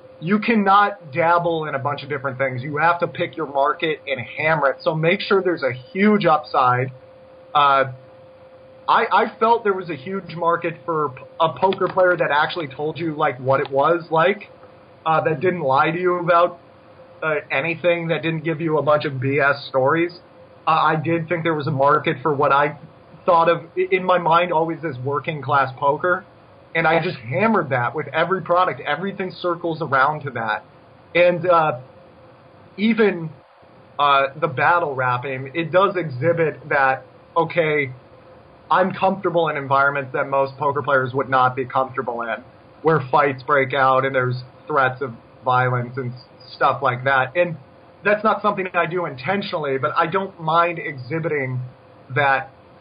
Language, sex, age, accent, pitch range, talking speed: English, male, 30-49, American, 135-175 Hz, 170 wpm